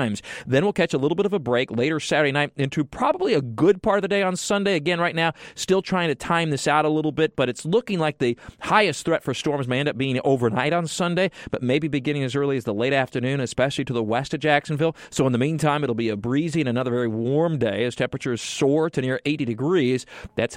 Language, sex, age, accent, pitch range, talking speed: English, male, 40-59, American, 125-155 Hz, 250 wpm